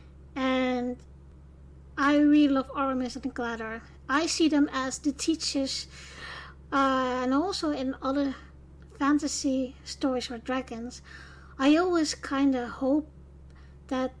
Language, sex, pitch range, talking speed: English, female, 250-290 Hz, 120 wpm